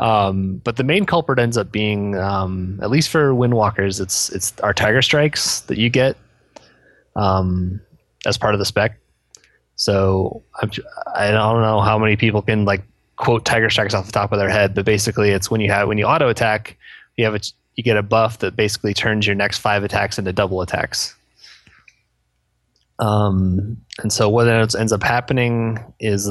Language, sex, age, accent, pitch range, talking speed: English, male, 20-39, American, 95-110 Hz, 185 wpm